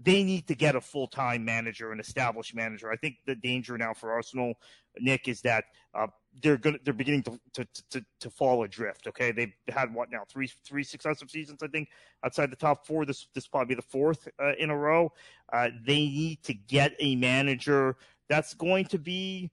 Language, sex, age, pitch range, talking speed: English, male, 30-49, 125-155 Hz, 210 wpm